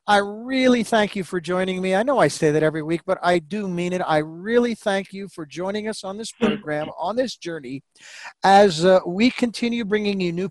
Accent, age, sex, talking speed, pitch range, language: American, 50-69, male, 225 wpm, 155-205 Hz, English